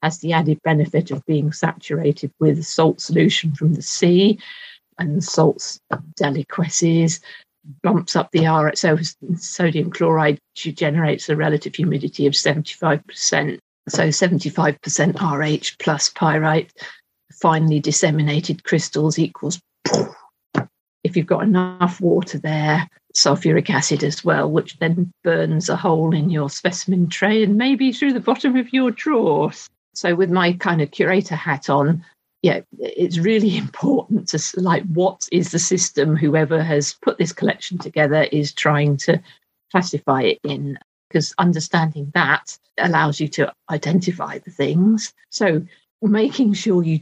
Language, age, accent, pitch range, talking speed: English, 50-69, British, 155-185 Hz, 140 wpm